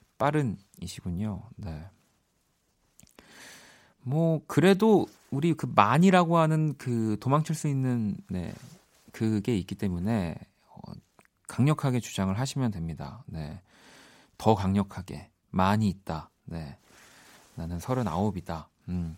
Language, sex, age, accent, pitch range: Korean, male, 40-59, native, 95-140 Hz